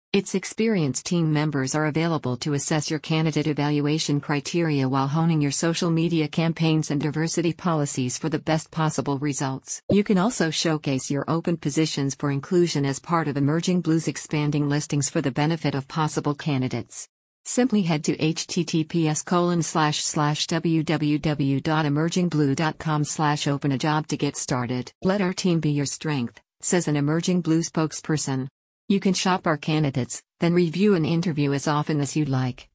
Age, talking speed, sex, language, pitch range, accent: 50-69, 160 wpm, female, English, 145-165 Hz, American